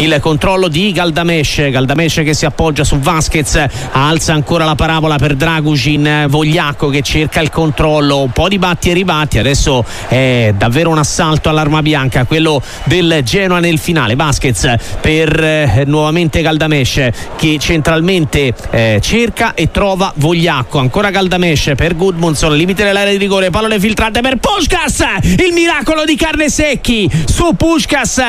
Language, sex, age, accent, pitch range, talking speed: Italian, male, 40-59, native, 160-260 Hz, 150 wpm